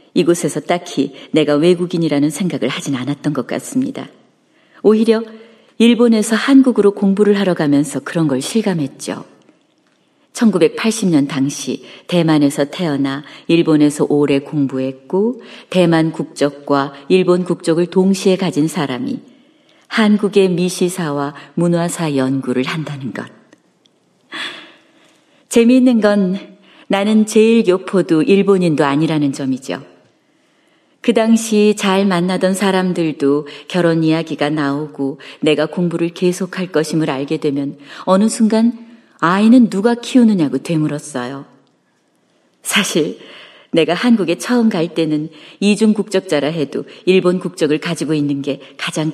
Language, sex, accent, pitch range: Korean, female, native, 145-210 Hz